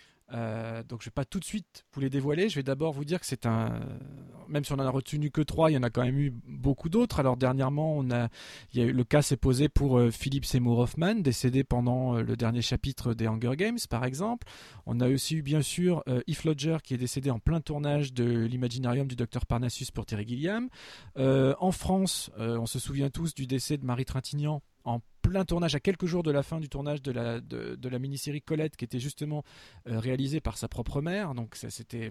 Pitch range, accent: 125-150 Hz, French